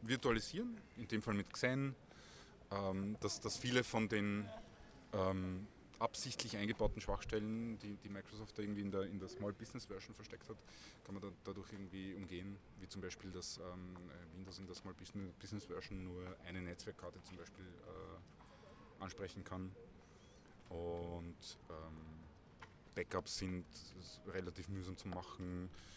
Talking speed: 145 wpm